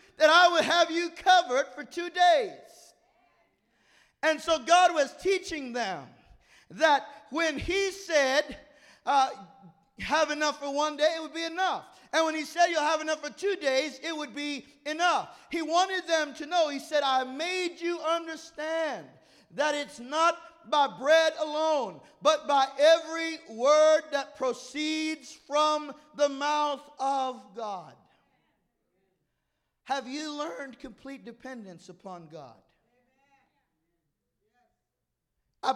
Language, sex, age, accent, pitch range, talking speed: English, male, 50-69, American, 260-320 Hz, 135 wpm